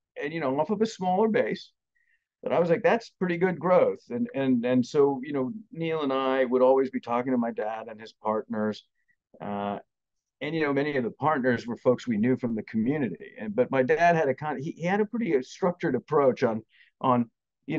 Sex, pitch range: male, 115-150 Hz